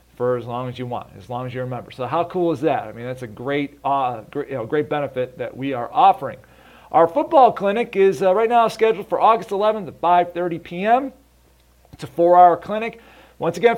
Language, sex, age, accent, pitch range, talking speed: English, male, 40-59, American, 145-205 Hz, 225 wpm